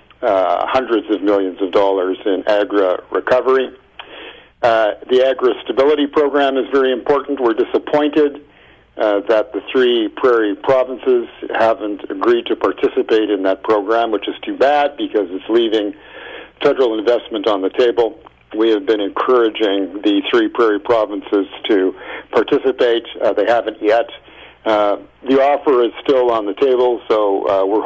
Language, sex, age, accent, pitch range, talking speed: English, male, 50-69, American, 105-150 Hz, 150 wpm